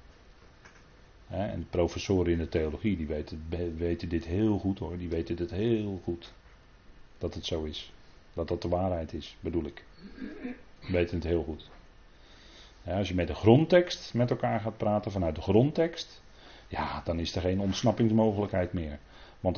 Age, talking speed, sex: 40-59, 170 wpm, male